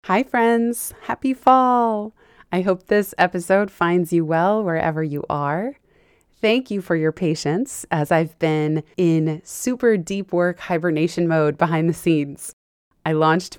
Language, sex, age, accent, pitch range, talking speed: English, female, 20-39, American, 155-185 Hz, 145 wpm